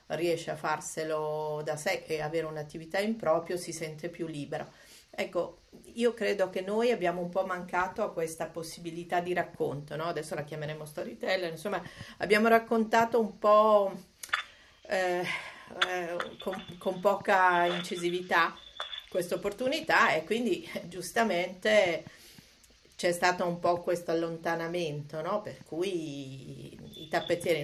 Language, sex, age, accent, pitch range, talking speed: Italian, female, 40-59, native, 165-195 Hz, 130 wpm